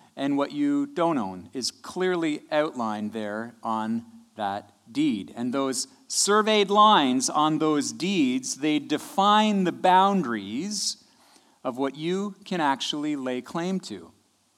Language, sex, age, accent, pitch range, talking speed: English, male, 40-59, American, 125-200 Hz, 130 wpm